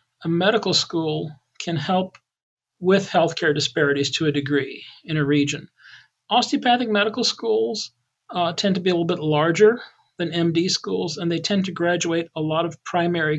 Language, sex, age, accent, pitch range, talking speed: English, male, 40-59, American, 150-180 Hz, 165 wpm